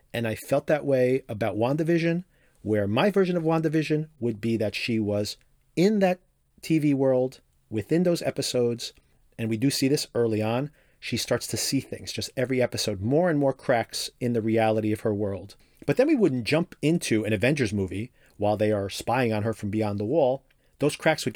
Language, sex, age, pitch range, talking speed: English, male, 40-59, 105-135 Hz, 200 wpm